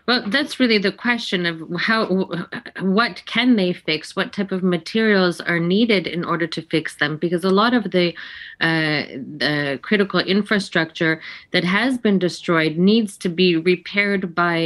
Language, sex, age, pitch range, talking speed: English, female, 30-49, 155-185 Hz, 165 wpm